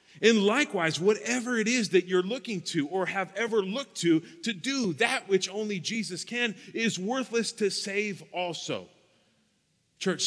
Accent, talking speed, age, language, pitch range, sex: American, 160 wpm, 40-59, English, 190-240 Hz, male